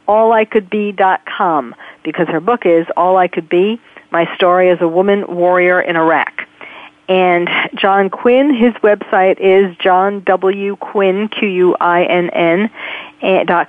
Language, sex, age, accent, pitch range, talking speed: English, female, 40-59, American, 185-240 Hz, 150 wpm